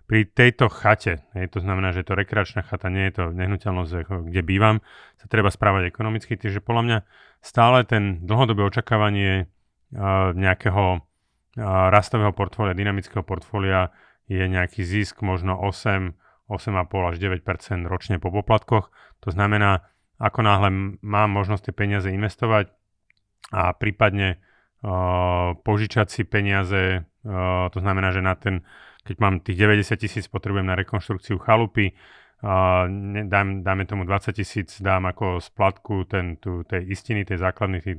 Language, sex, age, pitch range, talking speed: Slovak, male, 30-49, 95-105 Hz, 140 wpm